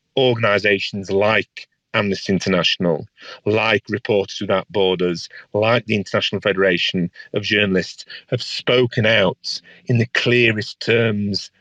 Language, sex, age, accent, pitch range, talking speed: English, male, 40-59, British, 95-120 Hz, 110 wpm